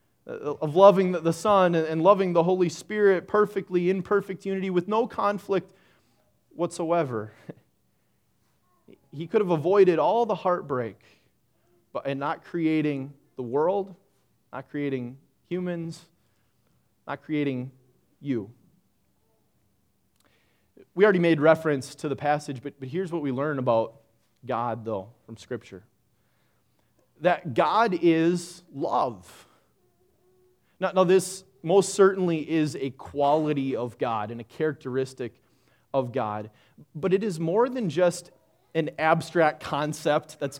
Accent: American